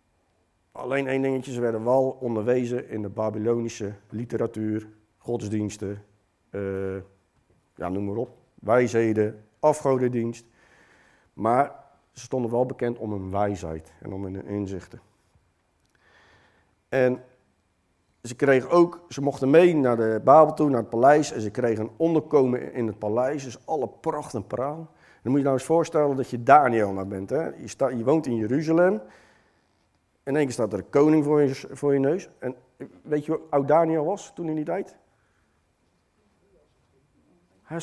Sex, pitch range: male, 105-140 Hz